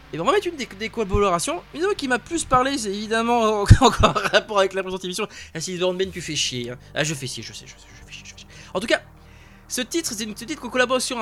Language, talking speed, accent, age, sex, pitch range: French, 295 wpm, French, 20-39, male, 190-275 Hz